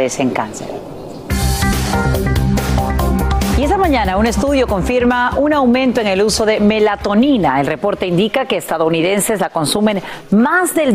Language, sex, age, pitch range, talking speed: Spanish, female, 40-59, 175-260 Hz, 130 wpm